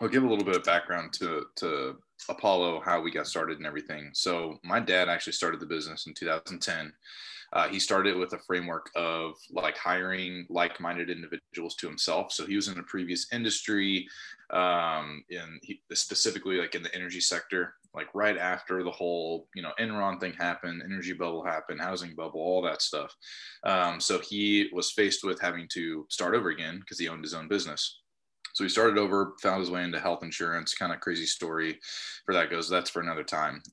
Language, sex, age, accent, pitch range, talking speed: English, male, 20-39, American, 85-95 Hz, 195 wpm